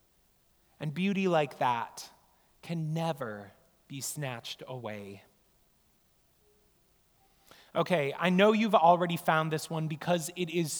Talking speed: 110 wpm